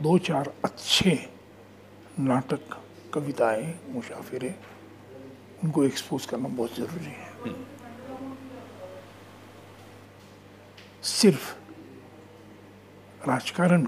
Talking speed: 60 wpm